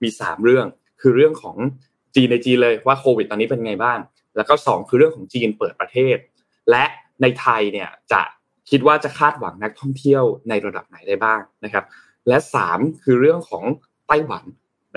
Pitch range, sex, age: 120-170 Hz, male, 20-39